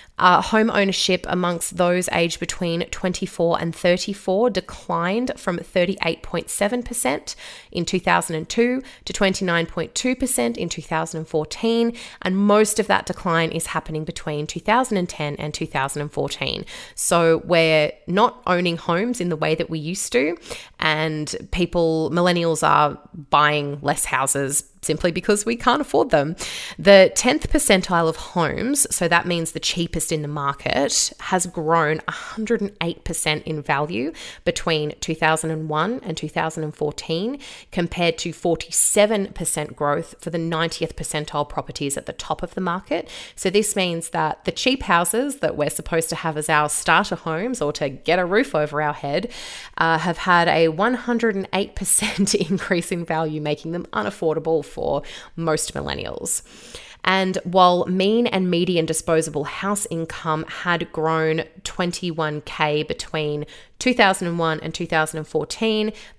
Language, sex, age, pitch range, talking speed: English, female, 20-39, 160-195 Hz, 130 wpm